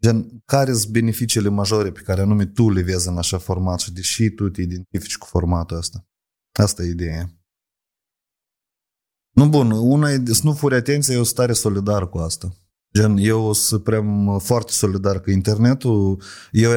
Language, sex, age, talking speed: Romanian, male, 30-49, 165 wpm